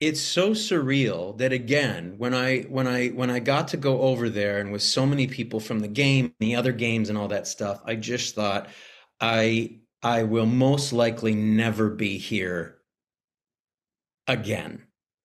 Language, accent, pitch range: English, American, 105-130 Hz